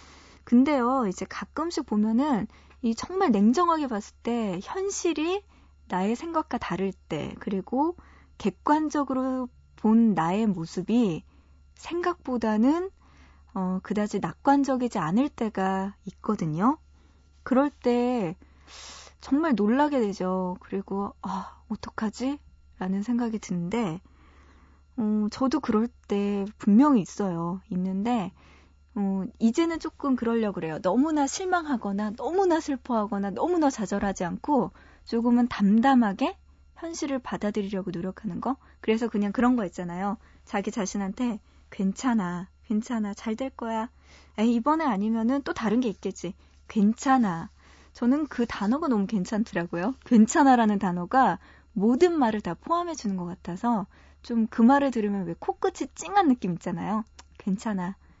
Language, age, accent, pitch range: Korean, 20-39, native, 195-265 Hz